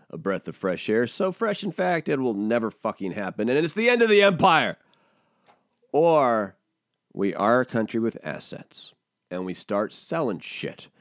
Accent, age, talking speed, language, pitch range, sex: American, 40-59, 180 wpm, English, 120-195 Hz, male